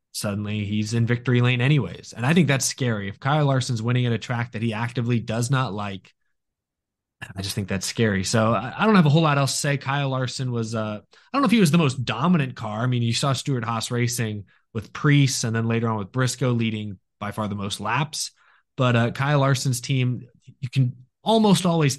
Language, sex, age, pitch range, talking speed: English, male, 20-39, 110-140 Hz, 225 wpm